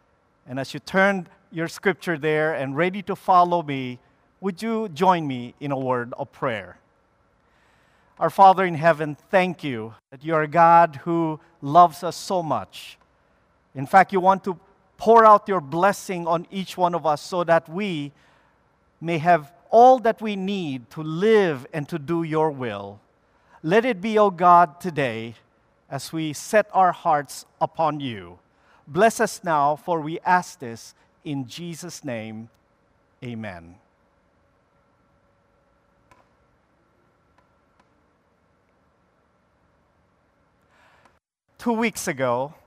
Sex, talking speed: male, 130 wpm